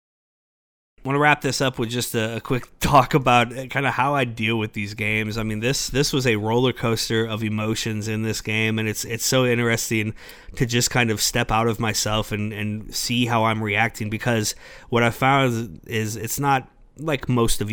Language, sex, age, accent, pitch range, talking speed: English, male, 30-49, American, 110-120 Hz, 210 wpm